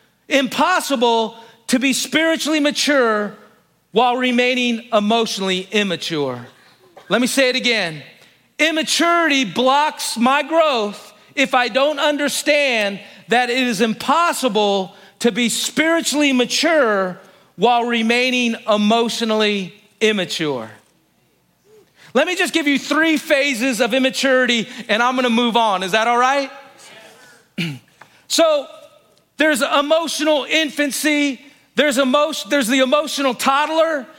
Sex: male